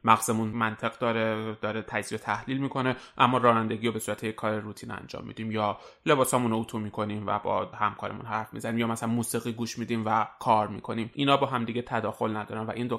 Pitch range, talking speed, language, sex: 115-135 Hz, 195 wpm, Persian, male